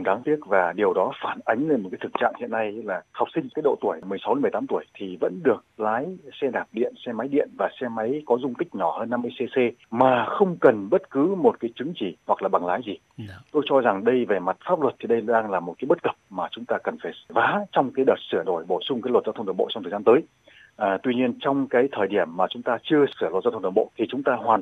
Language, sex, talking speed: Vietnamese, male, 285 wpm